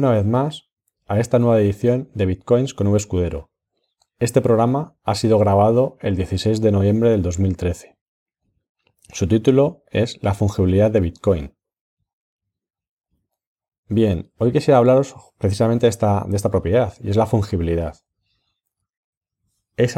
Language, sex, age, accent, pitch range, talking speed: Spanish, male, 30-49, Spanish, 95-110 Hz, 130 wpm